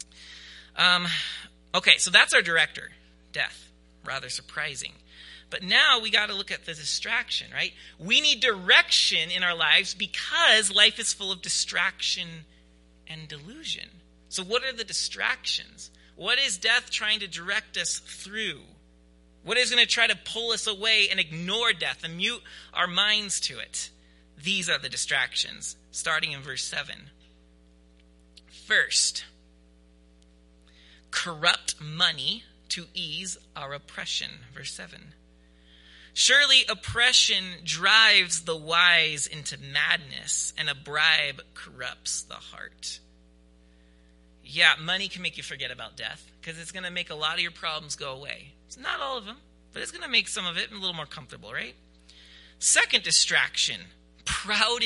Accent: American